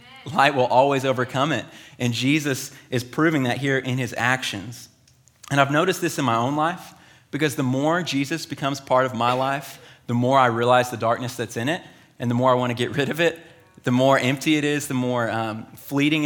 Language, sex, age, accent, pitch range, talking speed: English, male, 30-49, American, 115-140 Hz, 215 wpm